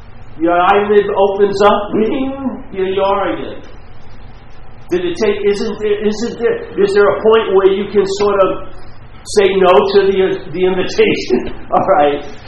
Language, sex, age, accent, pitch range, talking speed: English, male, 50-69, American, 155-250 Hz, 150 wpm